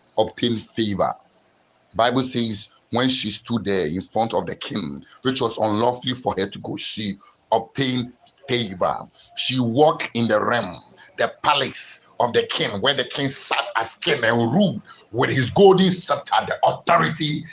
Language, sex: English, male